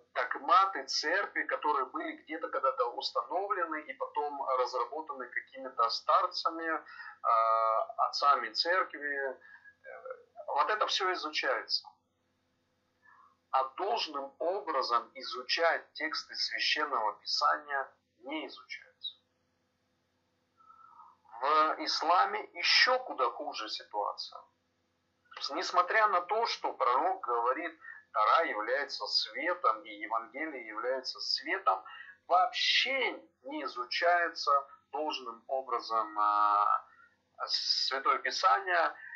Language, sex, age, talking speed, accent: Russian, male, 40-59, 85 wpm, native